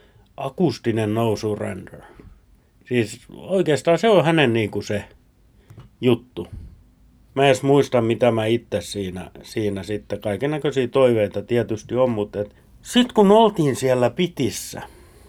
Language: Finnish